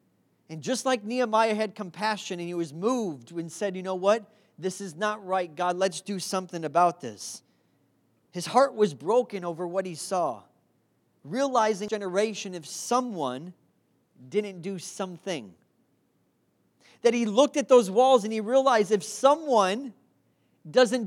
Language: English